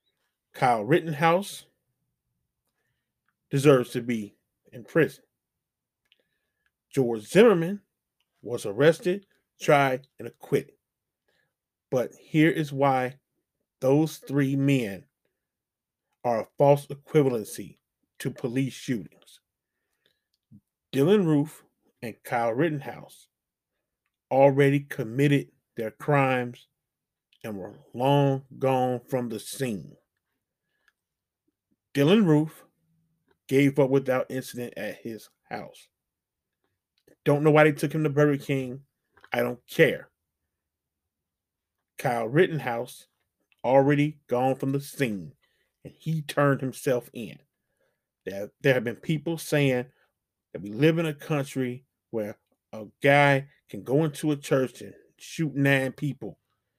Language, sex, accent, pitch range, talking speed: English, male, American, 125-150 Hz, 105 wpm